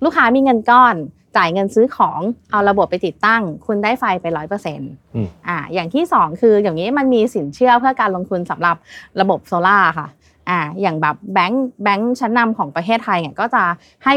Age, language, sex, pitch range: 20-39, Thai, female, 170-235 Hz